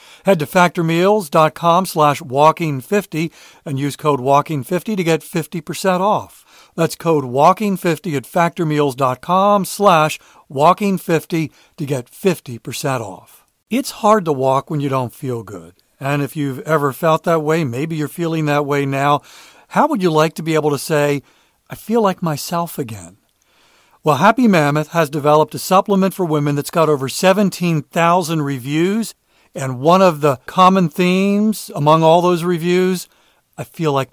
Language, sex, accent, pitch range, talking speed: English, male, American, 145-180 Hz, 155 wpm